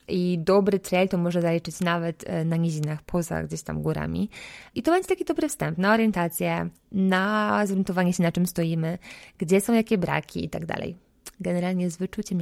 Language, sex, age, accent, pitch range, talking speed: Polish, female, 20-39, native, 165-195 Hz, 180 wpm